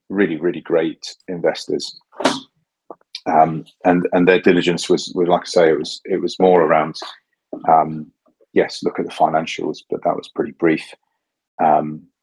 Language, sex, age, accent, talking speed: English, male, 40-59, British, 155 wpm